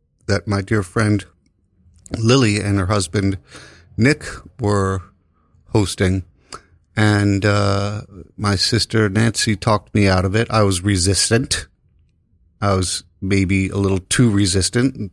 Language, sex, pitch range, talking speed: English, male, 95-120 Hz, 125 wpm